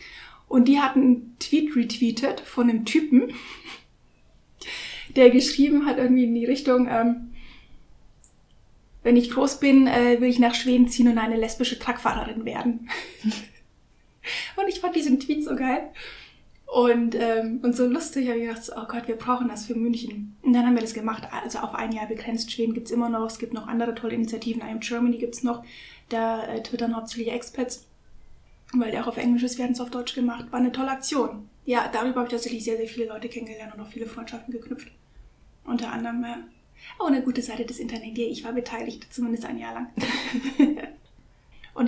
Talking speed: 190 wpm